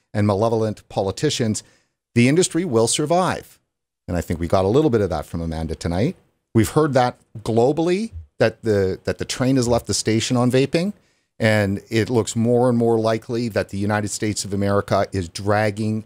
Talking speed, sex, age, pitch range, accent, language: 185 wpm, male, 50-69, 105-125 Hz, American, English